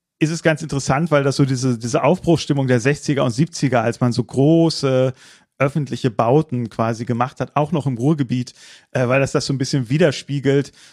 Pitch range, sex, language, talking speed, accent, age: 130-160 Hz, male, German, 185 wpm, German, 30-49